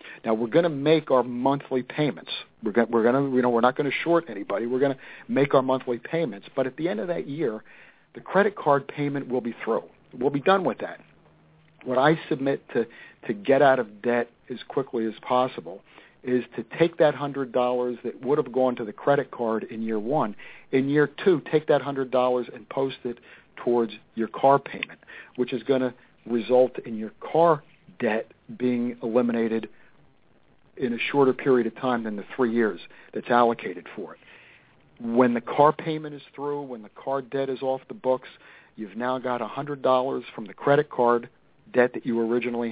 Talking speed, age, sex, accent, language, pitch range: 200 wpm, 50-69, male, American, English, 120-140 Hz